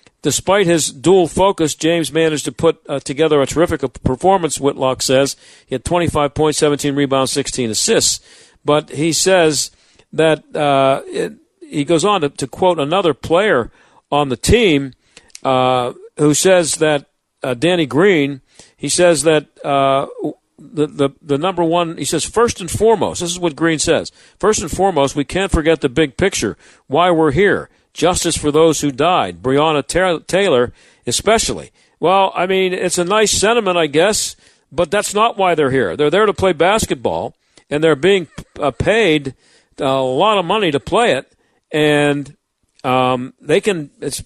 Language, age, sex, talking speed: English, 50-69, male, 165 wpm